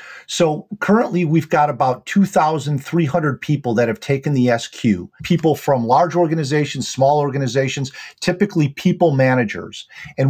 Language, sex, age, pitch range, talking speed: English, male, 50-69, 135-170 Hz, 130 wpm